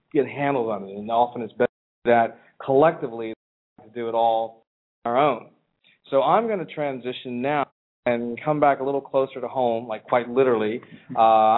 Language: English